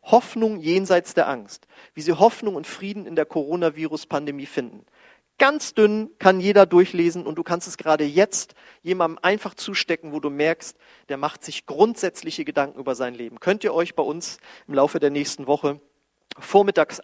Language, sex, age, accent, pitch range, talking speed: German, male, 40-59, German, 150-210 Hz, 175 wpm